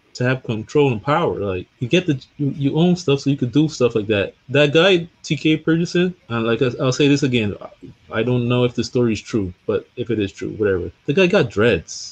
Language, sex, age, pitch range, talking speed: English, male, 20-39, 110-145 Hz, 250 wpm